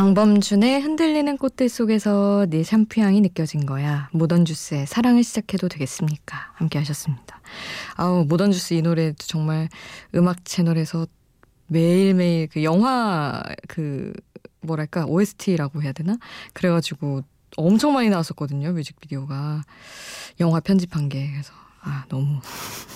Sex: female